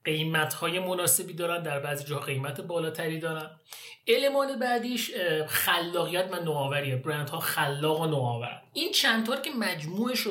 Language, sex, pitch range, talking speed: Persian, male, 155-200 Hz, 135 wpm